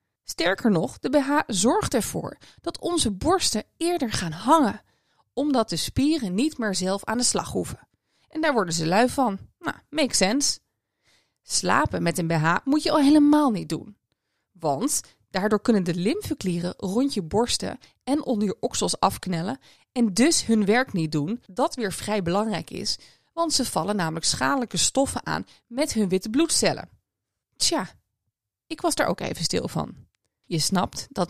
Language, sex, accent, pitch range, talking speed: Dutch, female, Dutch, 170-265 Hz, 165 wpm